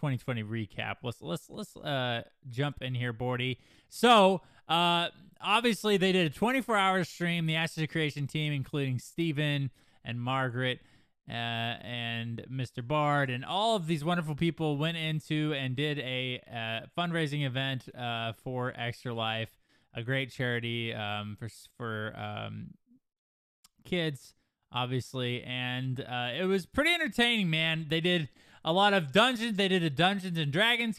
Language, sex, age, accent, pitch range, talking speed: English, male, 20-39, American, 120-165 Hz, 145 wpm